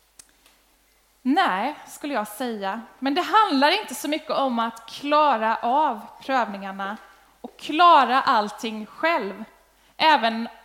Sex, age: female, 20-39